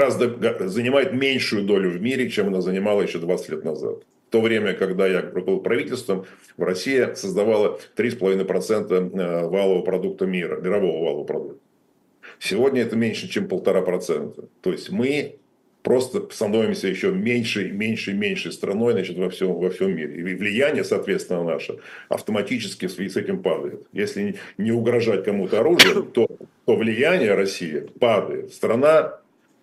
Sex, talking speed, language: male, 140 wpm, Russian